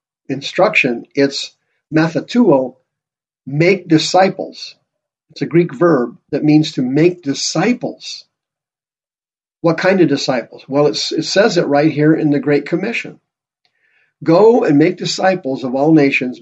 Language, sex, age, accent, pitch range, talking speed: English, male, 50-69, American, 135-170 Hz, 130 wpm